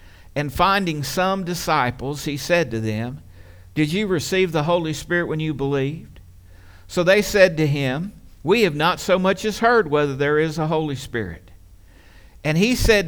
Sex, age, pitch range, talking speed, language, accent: male, 50-69, 120-175 Hz, 175 wpm, English, American